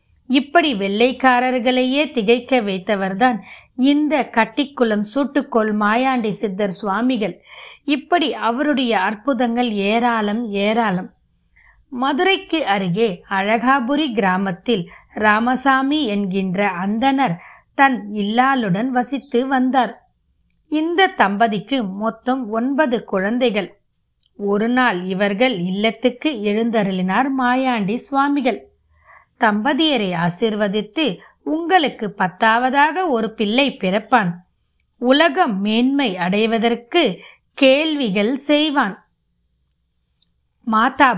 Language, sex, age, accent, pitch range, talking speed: Tamil, female, 20-39, native, 210-270 Hz, 65 wpm